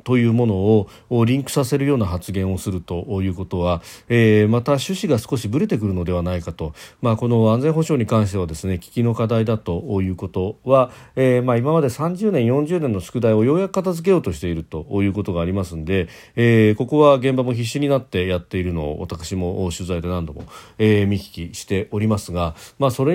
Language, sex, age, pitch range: Japanese, male, 40-59, 95-130 Hz